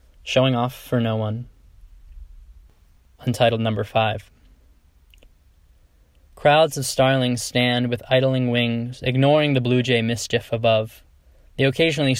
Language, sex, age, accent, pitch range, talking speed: English, male, 10-29, American, 105-125 Hz, 115 wpm